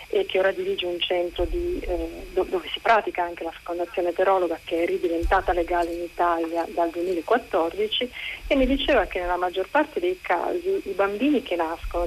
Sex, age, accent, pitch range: female, 40-59, native, 170-215 Hz